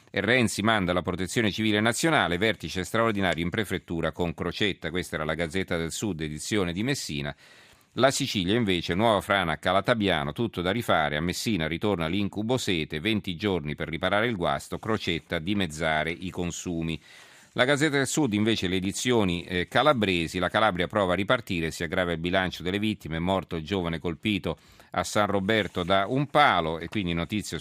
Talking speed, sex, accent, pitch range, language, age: 170 wpm, male, native, 85-110 Hz, Italian, 40-59